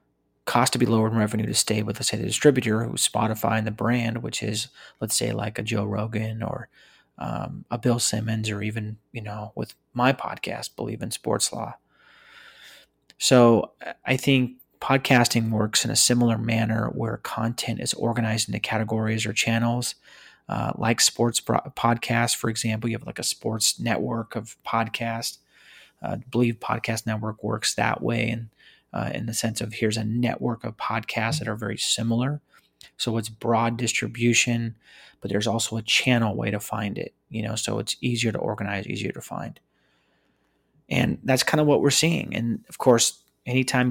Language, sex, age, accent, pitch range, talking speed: English, male, 30-49, American, 110-120 Hz, 175 wpm